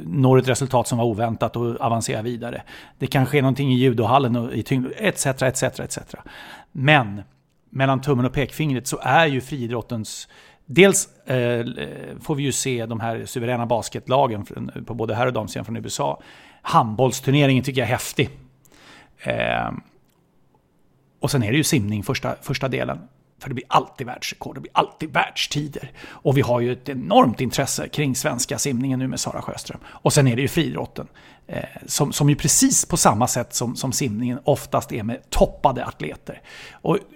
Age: 30-49